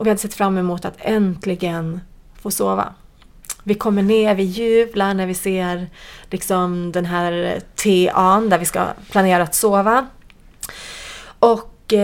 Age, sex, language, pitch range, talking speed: 30-49, female, English, 185-225 Hz, 140 wpm